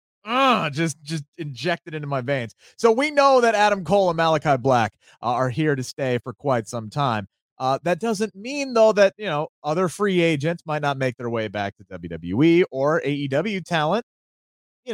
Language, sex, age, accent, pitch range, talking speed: English, male, 30-49, American, 130-190 Hz, 190 wpm